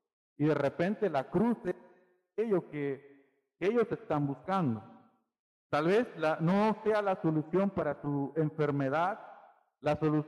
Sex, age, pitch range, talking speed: male, 50-69, 150-205 Hz, 140 wpm